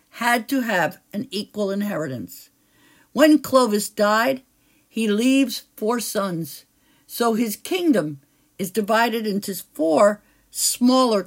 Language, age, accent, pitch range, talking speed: English, 60-79, American, 205-275 Hz, 110 wpm